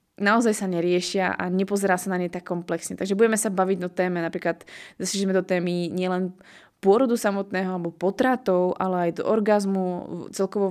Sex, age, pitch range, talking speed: female, 20-39, 180-200 Hz, 170 wpm